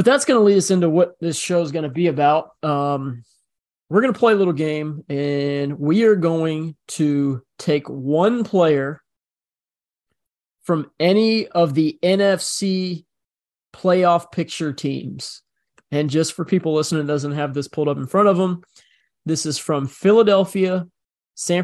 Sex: male